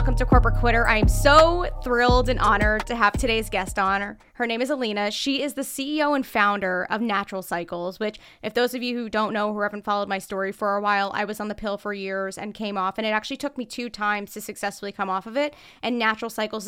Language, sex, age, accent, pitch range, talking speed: English, female, 20-39, American, 195-235 Hz, 250 wpm